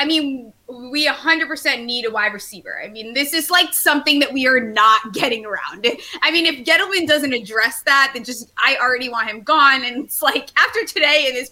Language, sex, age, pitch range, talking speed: English, female, 20-39, 215-290 Hz, 225 wpm